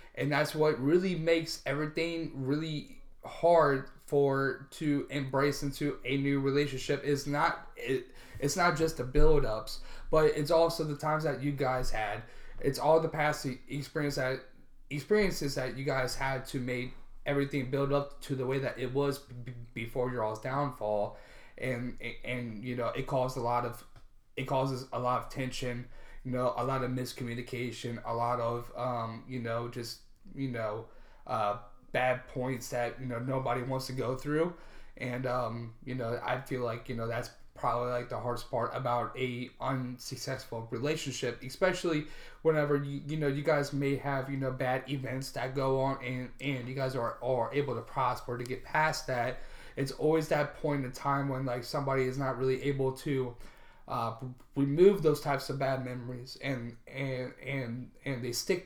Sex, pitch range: male, 125-145 Hz